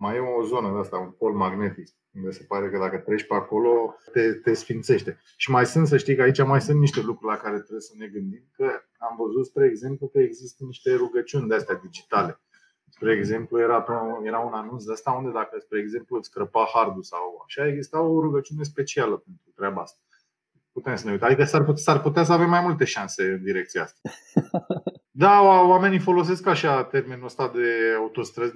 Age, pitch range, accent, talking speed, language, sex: 20-39, 115-180 Hz, native, 200 wpm, Romanian, male